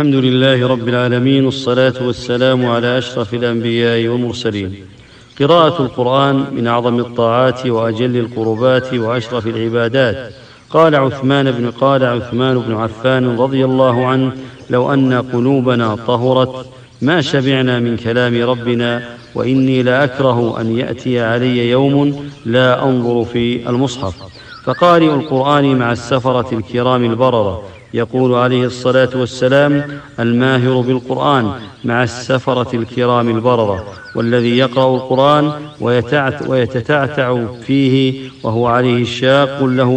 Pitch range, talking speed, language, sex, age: 120-130 Hz, 110 wpm, English, male, 40-59